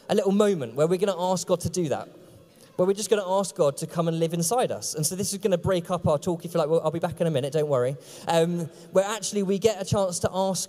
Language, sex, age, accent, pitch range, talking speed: English, male, 20-39, British, 165-215 Hz, 315 wpm